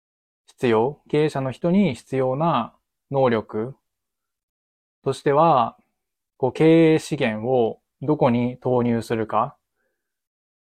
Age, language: 20-39, Japanese